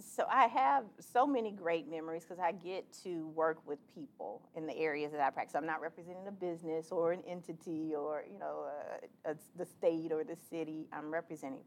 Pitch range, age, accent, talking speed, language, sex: 155-185 Hz, 40-59, American, 205 wpm, English, female